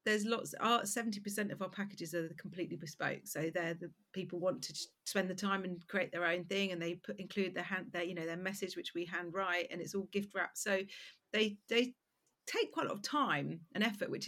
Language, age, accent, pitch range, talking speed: English, 40-59, British, 170-205 Hz, 235 wpm